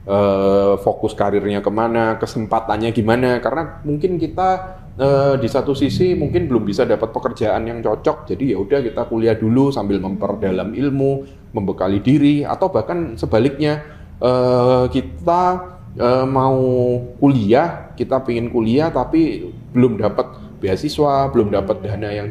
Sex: male